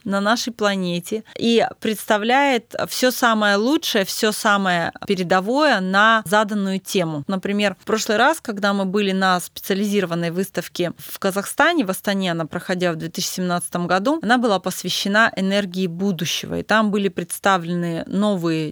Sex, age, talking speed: female, 20-39, 140 wpm